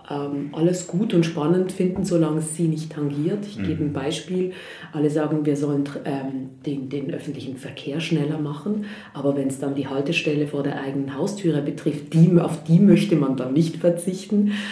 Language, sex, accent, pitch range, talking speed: German, female, German, 155-185 Hz, 185 wpm